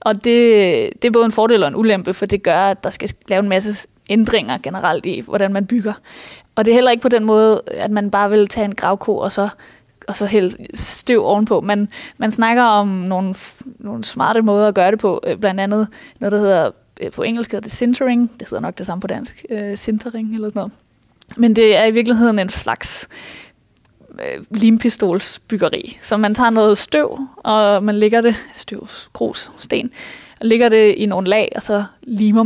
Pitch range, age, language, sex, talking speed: 200-225 Hz, 20-39, Danish, female, 200 wpm